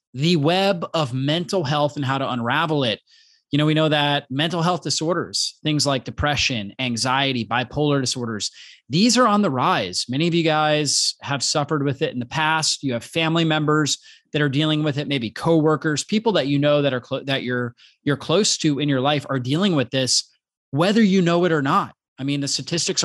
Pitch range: 130-160 Hz